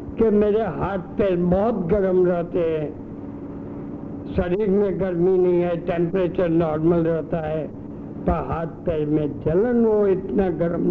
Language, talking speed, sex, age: Hindi, 140 wpm, male, 60-79